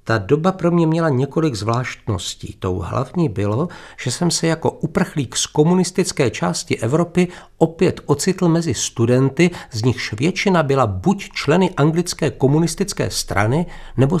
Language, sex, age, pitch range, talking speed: Czech, male, 50-69, 110-165 Hz, 140 wpm